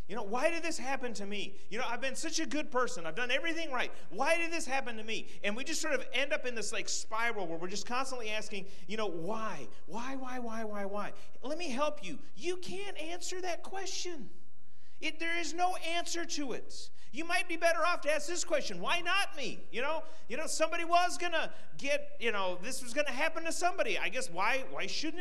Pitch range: 185-300 Hz